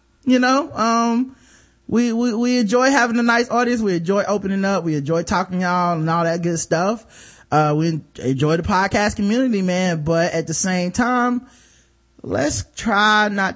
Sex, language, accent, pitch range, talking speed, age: male, English, American, 195-250 Hz, 175 wpm, 20-39